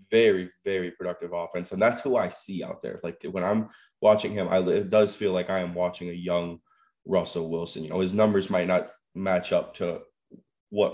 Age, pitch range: 20-39, 90-115 Hz